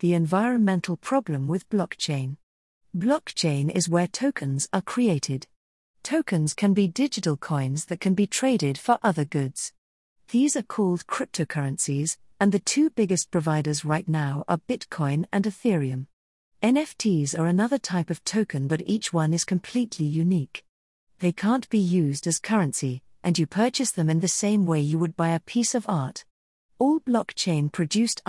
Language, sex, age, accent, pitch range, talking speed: English, female, 40-59, British, 155-210 Hz, 155 wpm